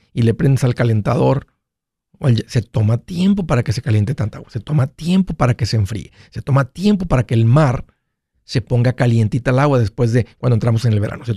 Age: 50-69